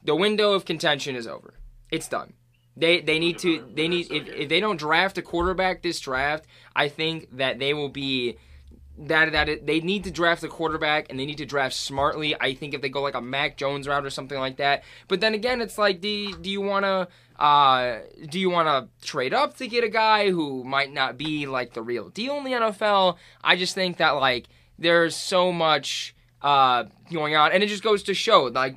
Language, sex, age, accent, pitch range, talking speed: English, male, 20-39, American, 125-175 Hz, 225 wpm